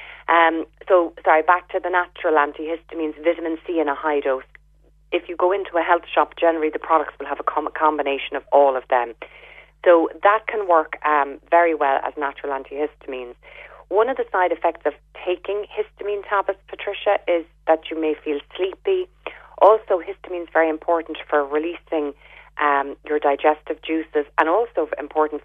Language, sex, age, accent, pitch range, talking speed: English, female, 30-49, Irish, 145-175 Hz, 170 wpm